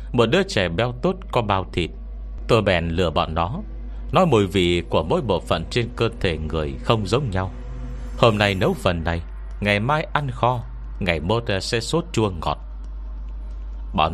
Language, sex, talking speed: Vietnamese, male, 185 wpm